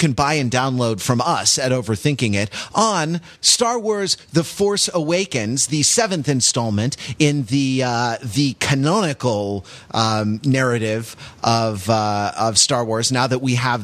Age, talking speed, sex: 30-49, 145 wpm, male